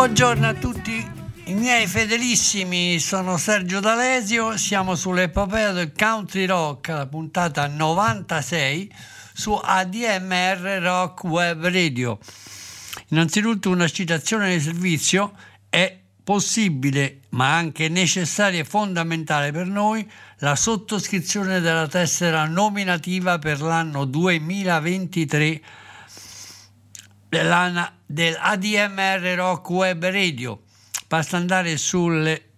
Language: Italian